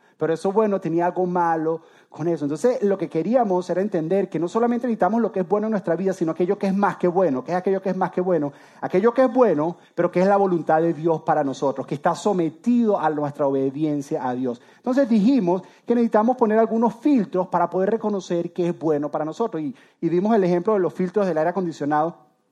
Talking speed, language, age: 230 wpm, Spanish, 30-49